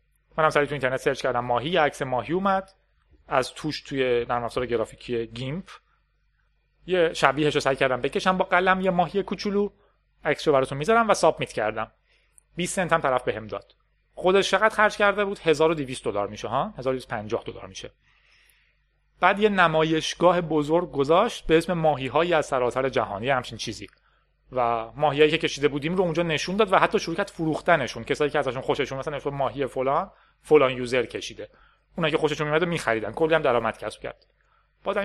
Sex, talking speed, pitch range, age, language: male, 170 wpm, 125-165 Hz, 30-49, Persian